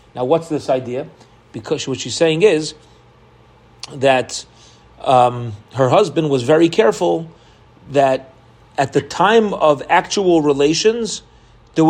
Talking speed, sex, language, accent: 120 wpm, male, English, American